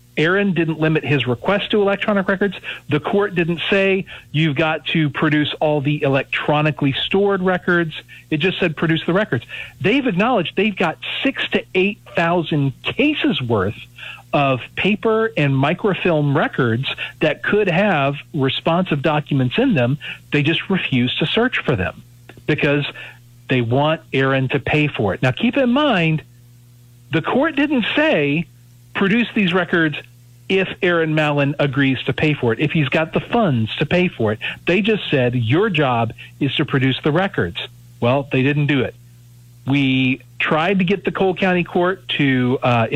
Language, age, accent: English, 40-59, American